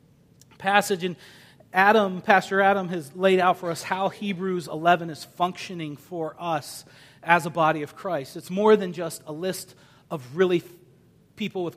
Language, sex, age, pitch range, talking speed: English, male, 40-59, 150-195 Hz, 165 wpm